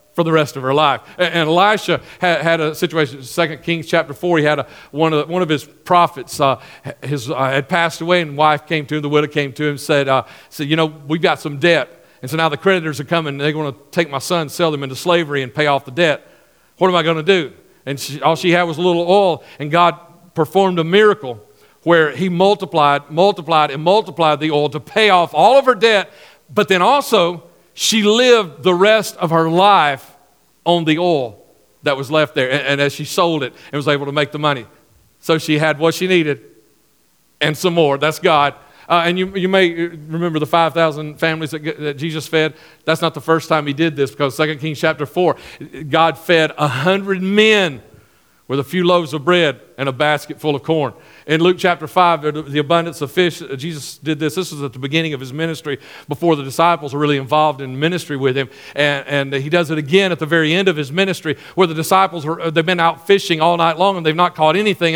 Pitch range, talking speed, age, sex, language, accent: 150-180 Hz, 230 wpm, 50-69, male, English, American